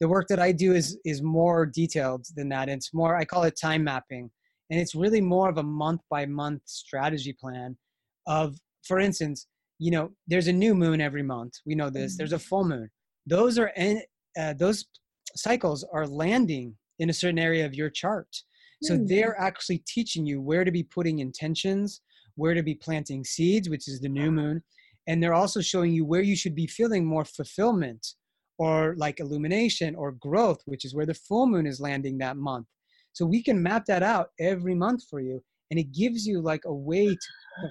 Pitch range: 150-185 Hz